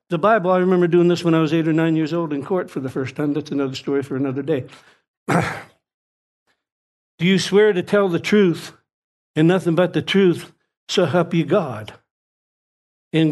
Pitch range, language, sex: 135-170 Hz, English, male